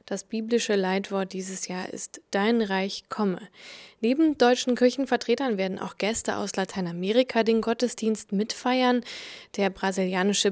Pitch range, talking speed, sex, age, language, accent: 195-235 Hz, 125 wpm, female, 20-39, German, German